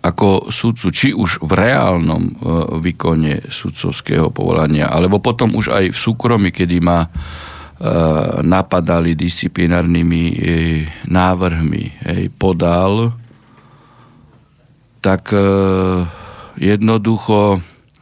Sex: male